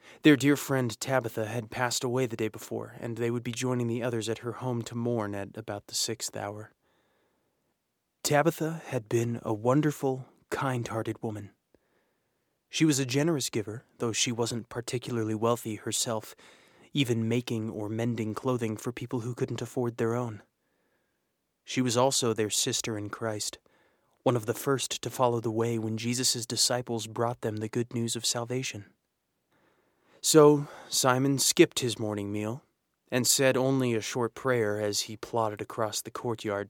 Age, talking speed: 30-49, 165 wpm